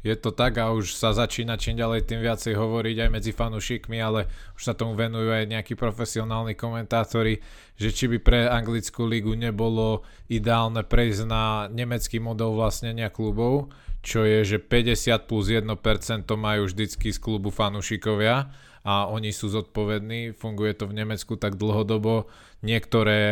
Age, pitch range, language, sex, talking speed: 20-39, 100-115 Hz, Slovak, male, 155 wpm